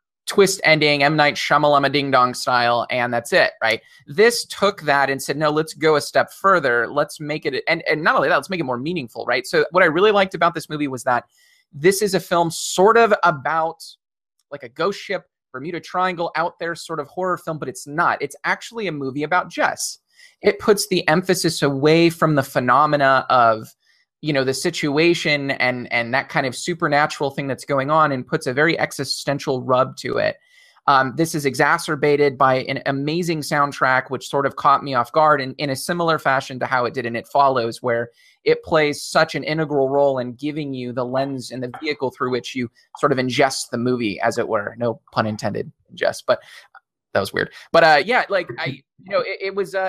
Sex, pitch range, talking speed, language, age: male, 135-170 Hz, 215 wpm, English, 20-39